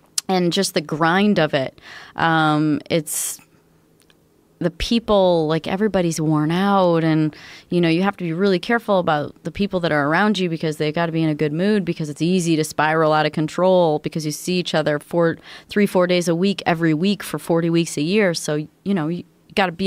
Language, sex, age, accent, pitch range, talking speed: English, female, 30-49, American, 155-195 Hz, 220 wpm